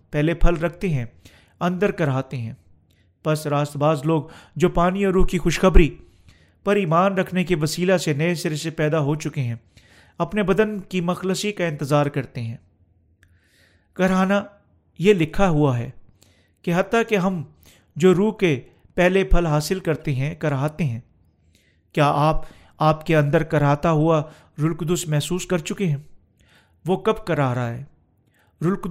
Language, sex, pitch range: Urdu, male, 130-180 Hz